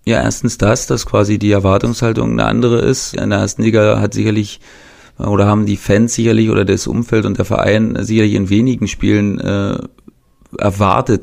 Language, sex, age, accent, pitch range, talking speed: German, male, 30-49, German, 95-110 Hz, 175 wpm